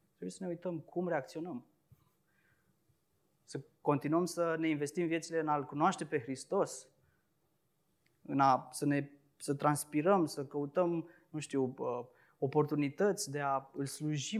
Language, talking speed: Romanian, 135 wpm